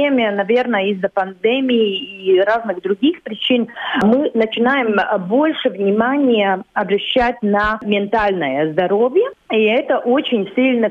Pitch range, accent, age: 190-275 Hz, native, 40-59